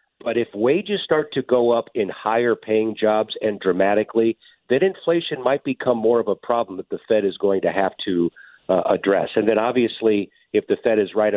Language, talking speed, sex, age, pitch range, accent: English, 205 wpm, male, 50-69, 100-155 Hz, American